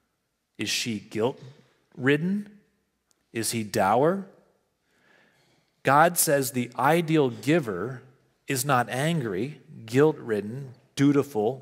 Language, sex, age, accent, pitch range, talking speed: English, male, 40-59, American, 120-160 Hz, 85 wpm